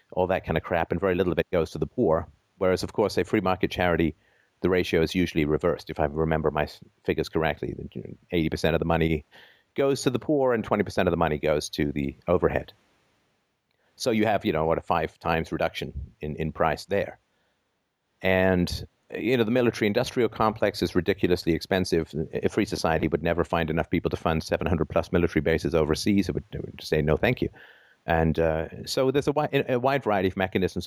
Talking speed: 200 wpm